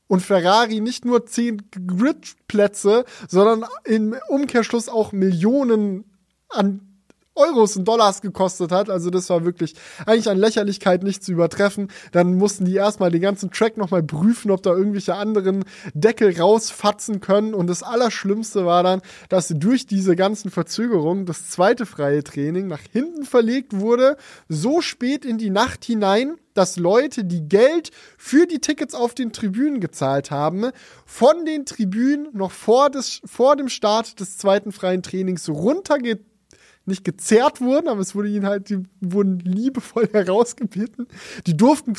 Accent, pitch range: German, 185-235 Hz